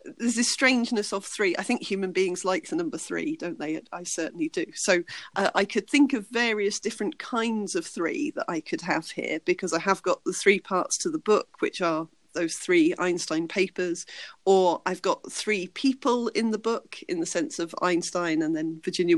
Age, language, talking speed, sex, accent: 40-59, English, 205 wpm, female, British